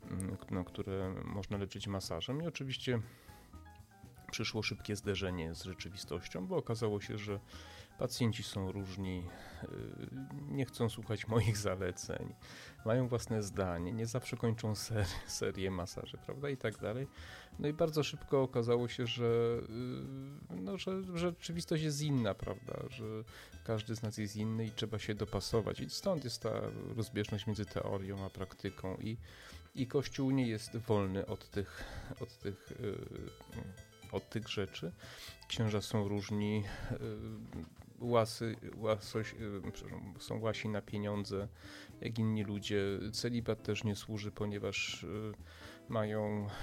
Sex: male